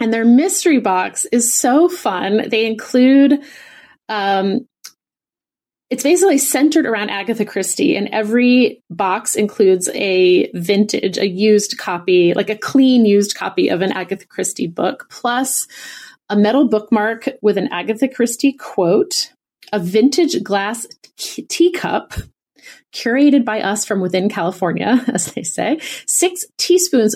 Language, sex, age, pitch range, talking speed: English, female, 30-49, 205-270 Hz, 130 wpm